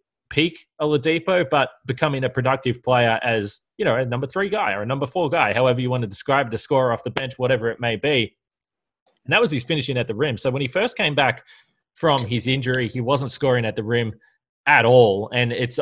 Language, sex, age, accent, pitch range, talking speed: English, male, 20-39, Australian, 115-140 Hz, 230 wpm